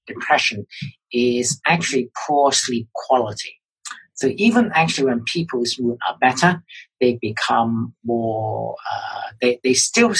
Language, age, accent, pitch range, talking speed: English, 50-69, British, 115-145 Hz, 125 wpm